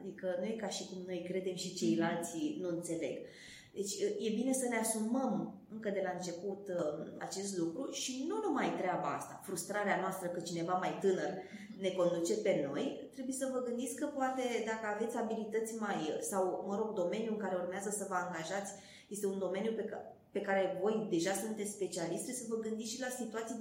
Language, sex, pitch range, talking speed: Romanian, female, 185-235 Hz, 185 wpm